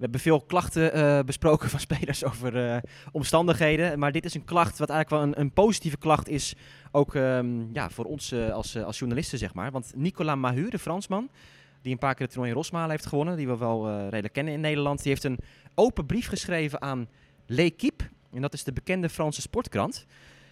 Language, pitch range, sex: Dutch, 125-150 Hz, male